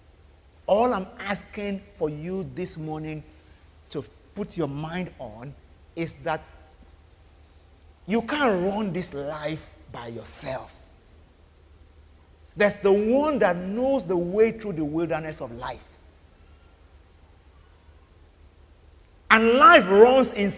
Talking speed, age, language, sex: 110 wpm, 50-69, English, male